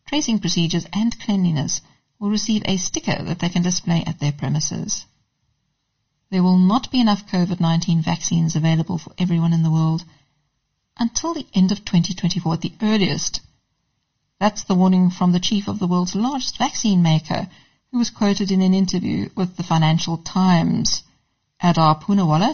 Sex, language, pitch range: female, English, 165-195 Hz